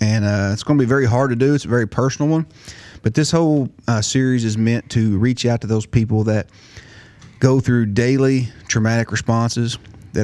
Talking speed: 200 wpm